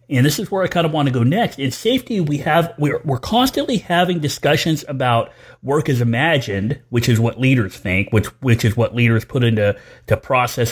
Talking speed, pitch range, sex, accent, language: 215 wpm, 115-145 Hz, male, American, English